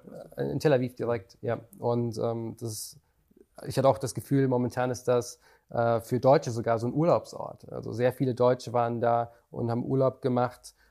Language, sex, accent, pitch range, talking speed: German, male, German, 120-135 Hz, 175 wpm